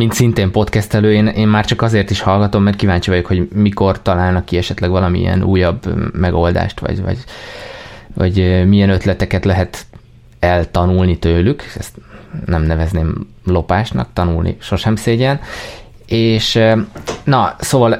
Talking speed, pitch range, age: 135 wpm, 95-110 Hz, 20-39